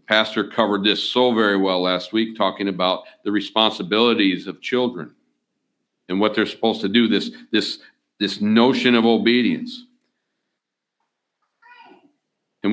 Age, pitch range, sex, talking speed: 60-79, 100-120 Hz, male, 125 wpm